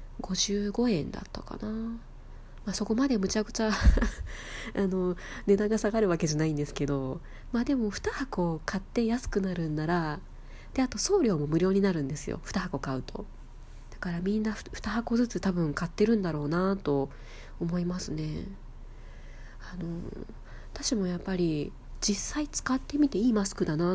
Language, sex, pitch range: Japanese, female, 165-225 Hz